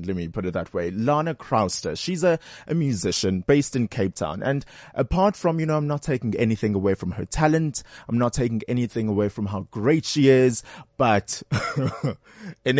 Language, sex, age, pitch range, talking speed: English, male, 20-39, 105-135 Hz, 190 wpm